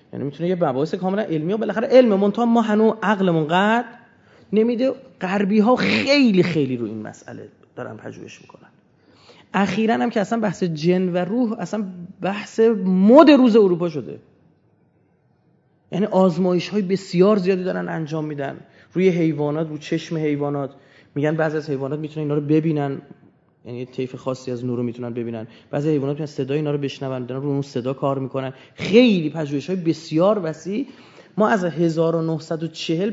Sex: male